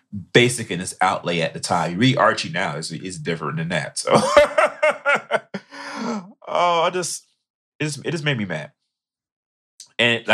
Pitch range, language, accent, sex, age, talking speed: 90-115 Hz, English, American, male, 30-49, 165 wpm